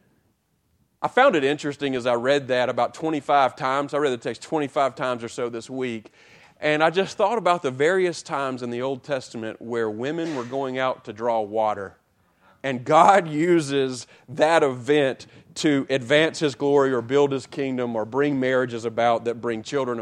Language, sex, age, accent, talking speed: English, male, 40-59, American, 185 wpm